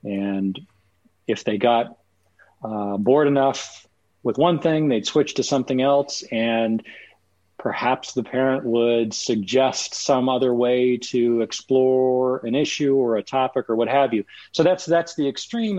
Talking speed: 150 wpm